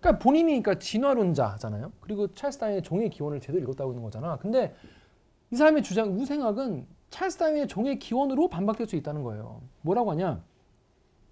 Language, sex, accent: Korean, male, native